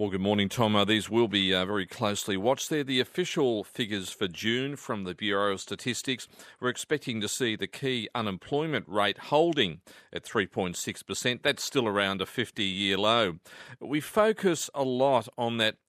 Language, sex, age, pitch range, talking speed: English, male, 40-59, 105-130 Hz, 180 wpm